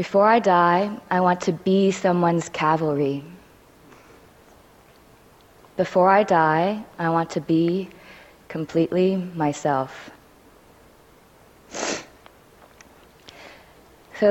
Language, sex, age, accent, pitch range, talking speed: English, female, 20-39, American, 165-195 Hz, 80 wpm